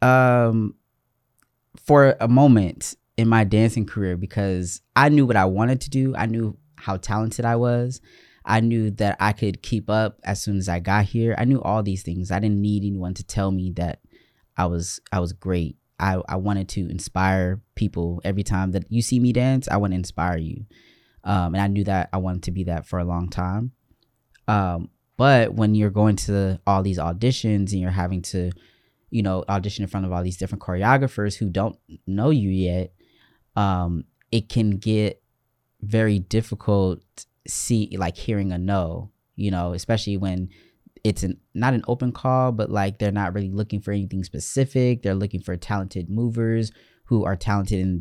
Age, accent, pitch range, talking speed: 20-39, American, 95-110 Hz, 190 wpm